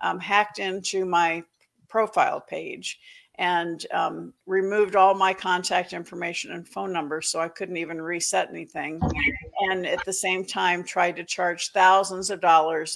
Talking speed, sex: 155 wpm, female